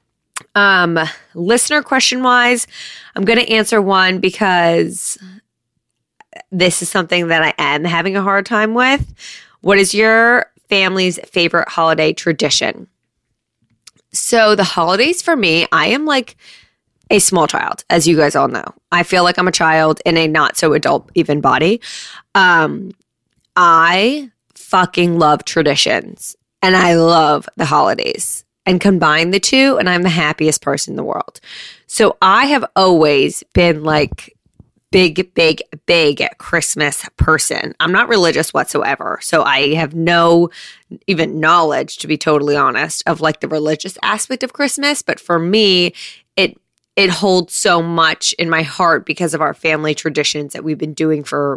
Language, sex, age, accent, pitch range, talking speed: English, female, 20-39, American, 160-200 Hz, 150 wpm